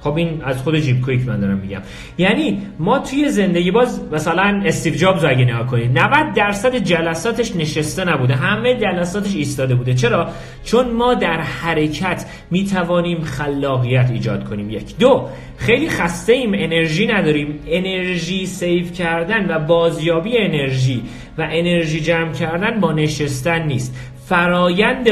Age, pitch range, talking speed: 40-59, 135-185 Hz, 145 wpm